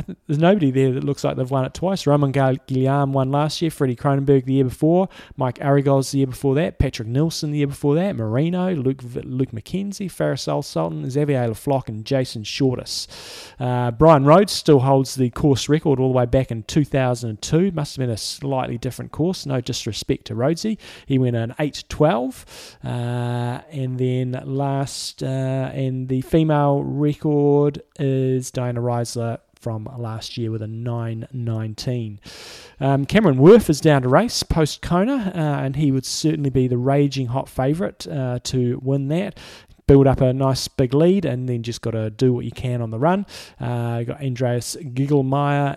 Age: 20-39